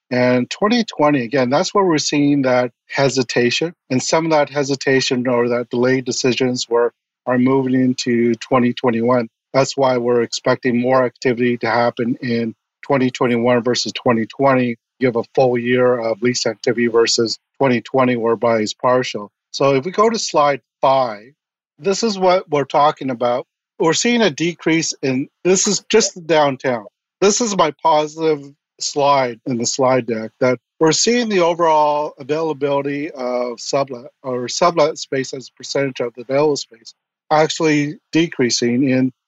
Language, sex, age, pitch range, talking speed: English, male, 50-69, 125-150 Hz, 155 wpm